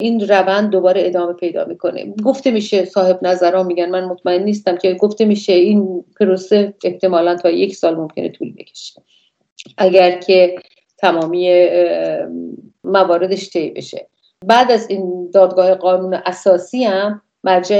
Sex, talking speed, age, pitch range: female, 135 wpm, 50-69, 180-205 Hz